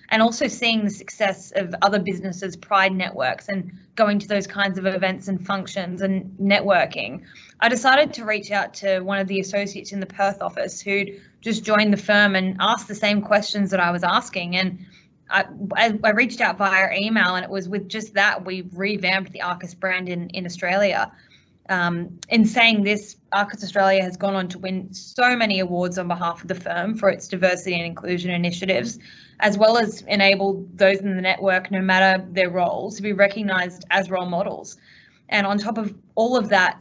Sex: female